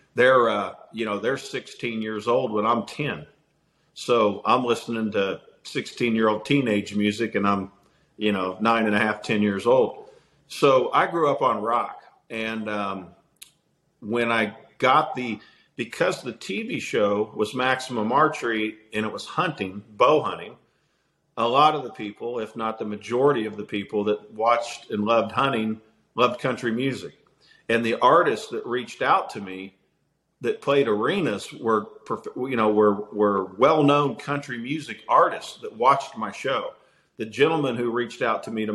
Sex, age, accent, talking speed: male, 50-69, American, 165 wpm